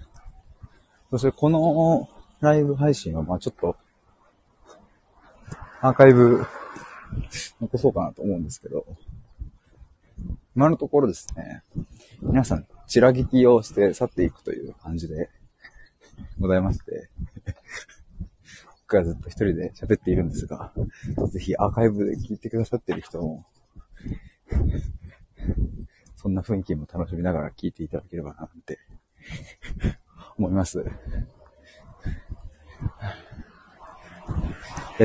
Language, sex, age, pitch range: Japanese, male, 40-59, 90-145 Hz